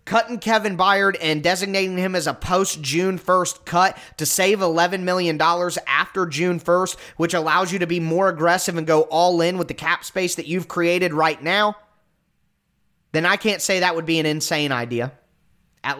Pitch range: 165-215 Hz